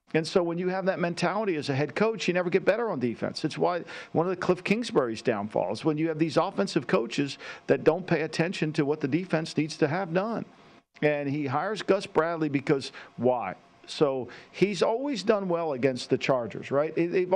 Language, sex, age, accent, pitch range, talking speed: English, male, 50-69, American, 140-180 Hz, 205 wpm